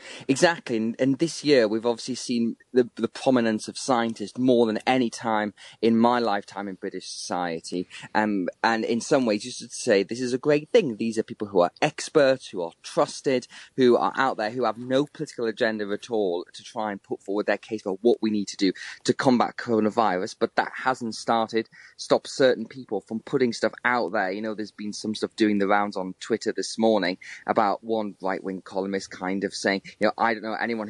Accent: British